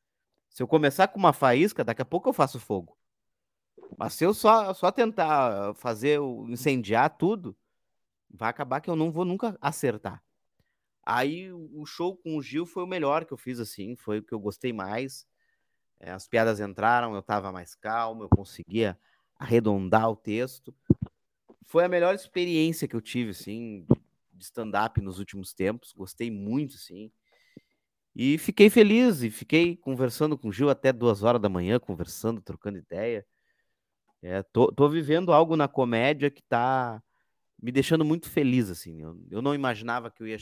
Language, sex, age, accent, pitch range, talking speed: Portuguese, male, 30-49, Brazilian, 105-145 Hz, 170 wpm